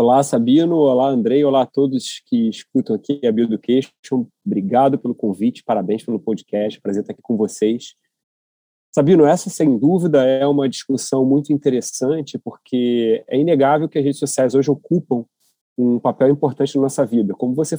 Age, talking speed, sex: 30-49, 170 wpm, male